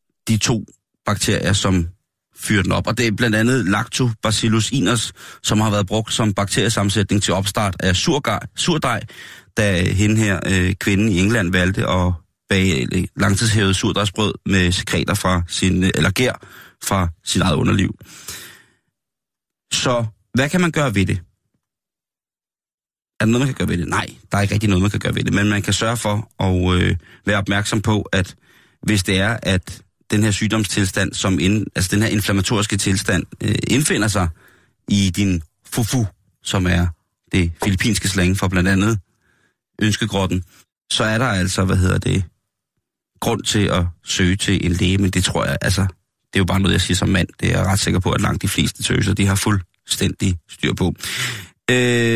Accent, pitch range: native, 95-115 Hz